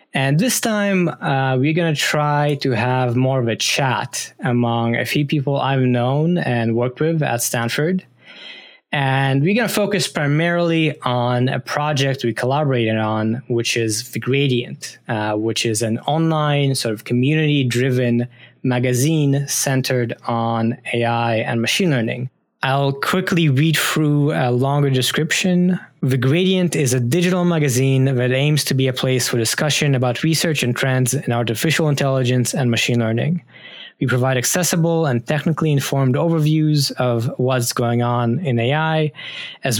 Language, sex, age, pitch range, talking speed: English, male, 20-39, 120-150 Hz, 155 wpm